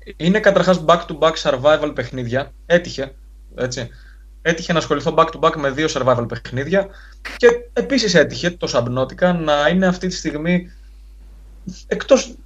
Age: 20-39